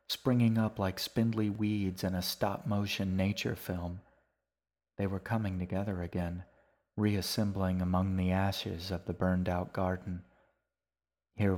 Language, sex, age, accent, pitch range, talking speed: English, male, 30-49, American, 95-105 Hz, 125 wpm